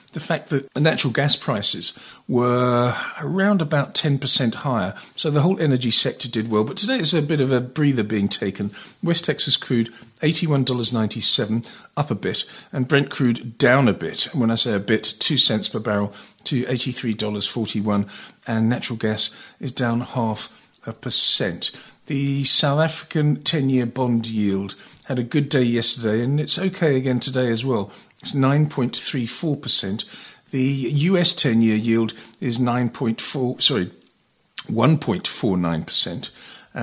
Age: 50-69